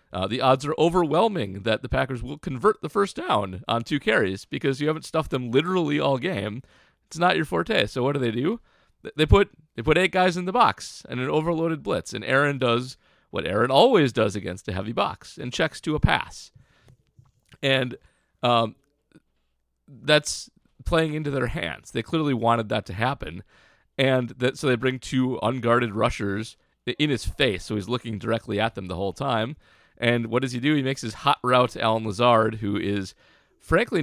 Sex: male